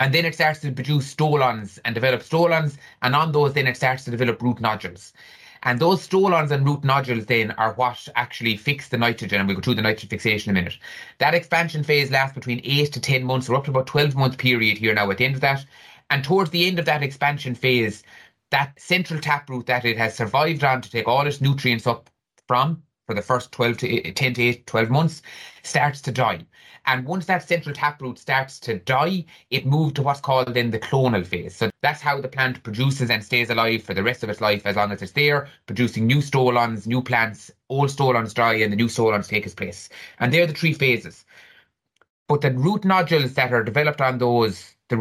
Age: 30-49